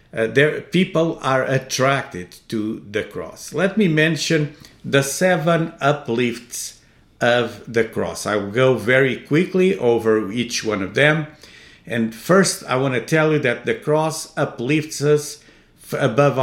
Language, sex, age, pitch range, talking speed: English, male, 50-69, 115-170 Hz, 150 wpm